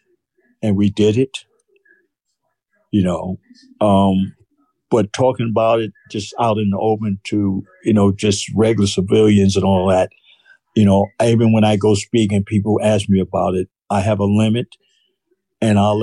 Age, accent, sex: 60-79, American, male